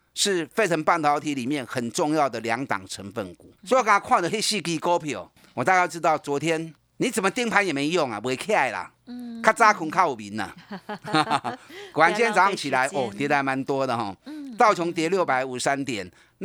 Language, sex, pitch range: Chinese, male, 135-205 Hz